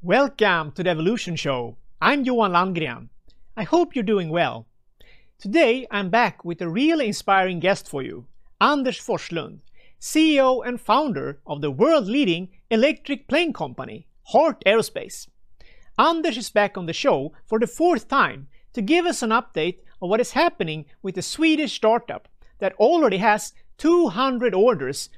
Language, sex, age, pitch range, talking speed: English, male, 50-69, 185-290 Hz, 155 wpm